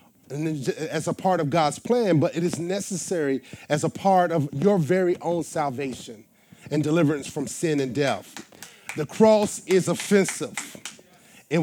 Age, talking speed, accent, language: 30-49, 150 wpm, American, English